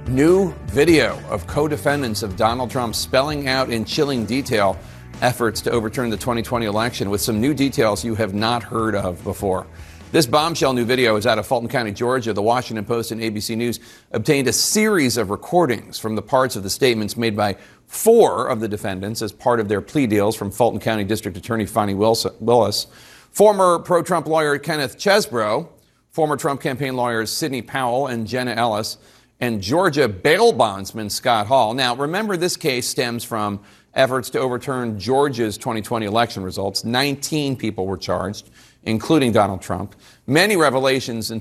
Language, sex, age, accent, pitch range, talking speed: English, male, 40-59, American, 110-135 Hz, 170 wpm